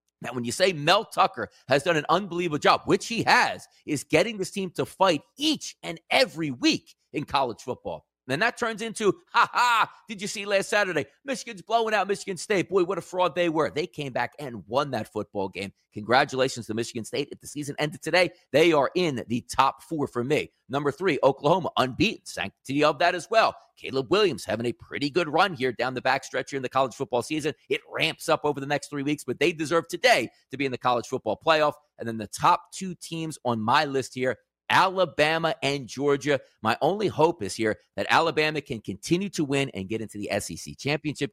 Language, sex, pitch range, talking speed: English, male, 125-180 Hz, 215 wpm